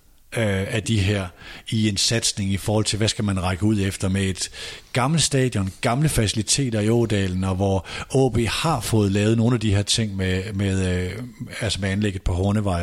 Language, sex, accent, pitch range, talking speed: Danish, male, native, 100-125 Hz, 190 wpm